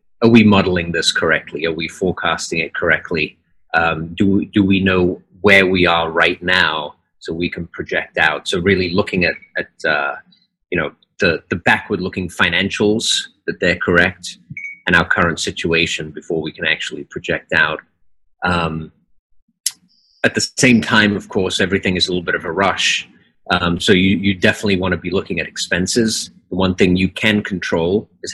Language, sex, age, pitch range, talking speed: English, male, 30-49, 85-105 Hz, 180 wpm